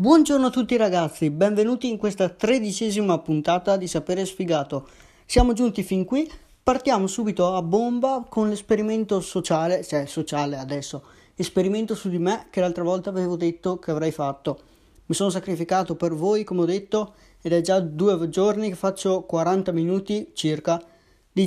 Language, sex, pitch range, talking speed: Italian, male, 155-190 Hz, 160 wpm